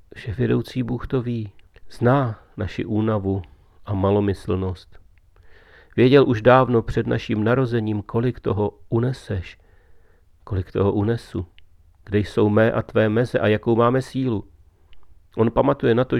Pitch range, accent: 90-120 Hz, native